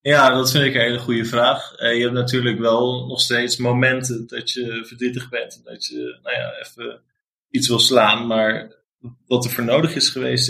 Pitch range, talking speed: 115-125 Hz, 205 wpm